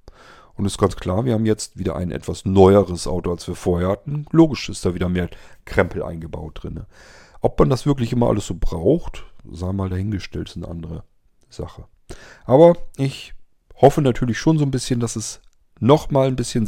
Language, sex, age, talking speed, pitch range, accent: German, male, 40-59, 190 wpm, 90-120 Hz, German